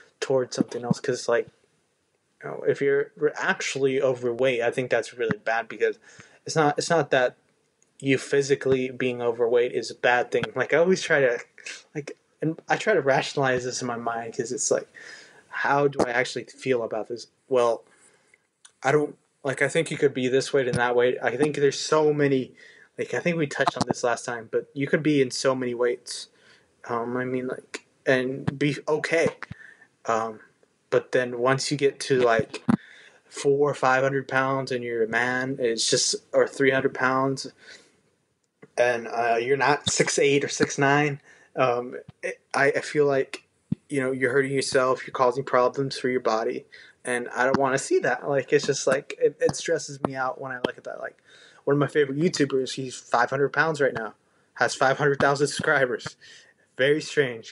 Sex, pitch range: male, 130-155 Hz